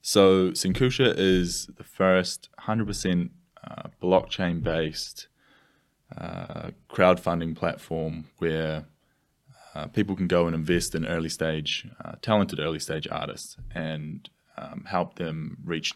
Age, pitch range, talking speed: 20-39, 80-90 Hz, 120 wpm